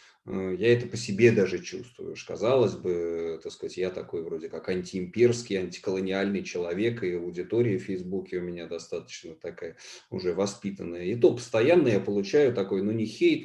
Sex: male